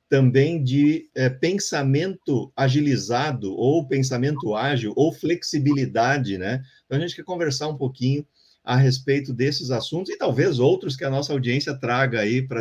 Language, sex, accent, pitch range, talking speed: Portuguese, male, Brazilian, 125-155 Hz, 150 wpm